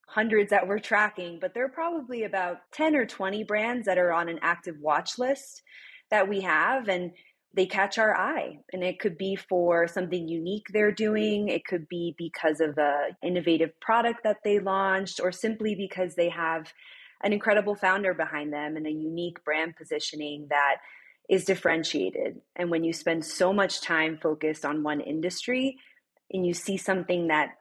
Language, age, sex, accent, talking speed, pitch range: English, 20-39, female, American, 180 wpm, 165-205 Hz